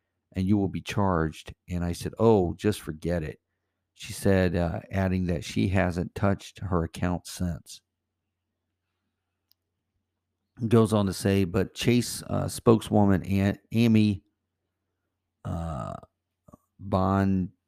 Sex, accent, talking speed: male, American, 120 wpm